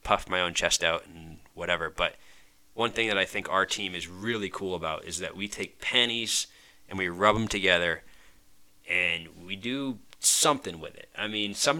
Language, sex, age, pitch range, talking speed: English, male, 20-39, 85-105 Hz, 195 wpm